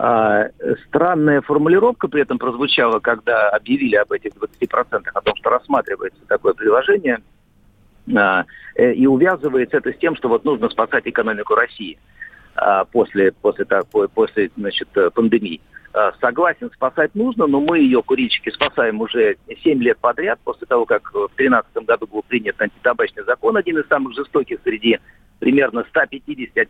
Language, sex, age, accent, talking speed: Russian, male, 50-69, native, 150 wpm